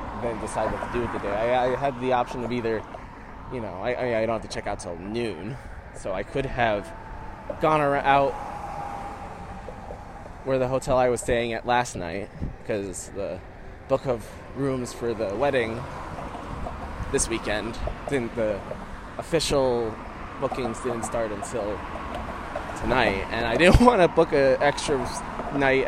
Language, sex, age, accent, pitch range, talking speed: English, male, 20-39, American, 105-130 Hz, 155 wpm